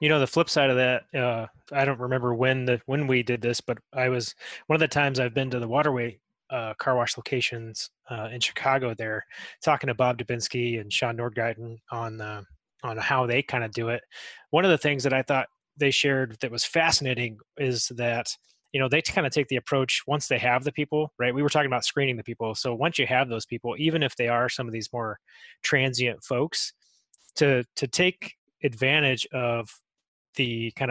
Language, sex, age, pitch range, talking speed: English, male, 20-39, 120-145 Hz, 215 wpm